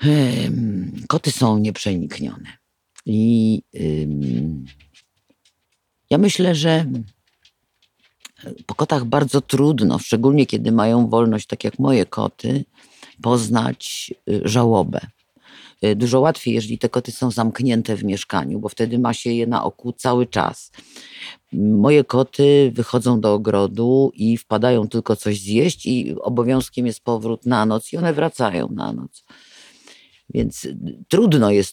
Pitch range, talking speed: 105-130 Hz, 120 wpm